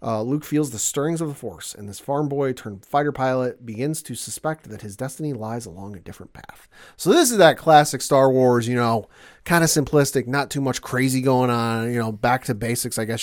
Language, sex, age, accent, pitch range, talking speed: English, male, 30-49, American, 115-145 Hz, 230 wpm